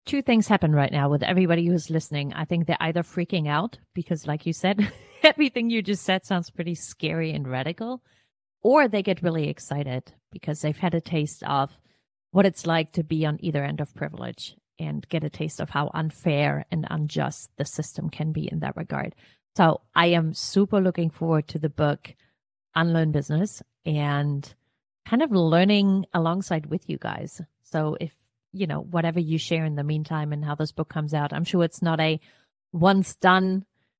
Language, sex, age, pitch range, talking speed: English, female, 30-49, 150-185 Hz, 190 wpm